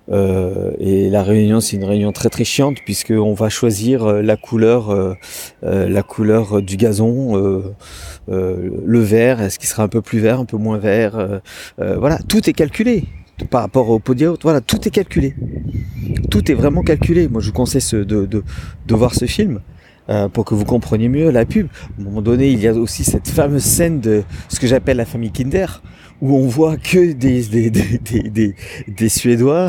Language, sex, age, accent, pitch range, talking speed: French, male, 40-59, French, 105-125 Hz, 205 wpm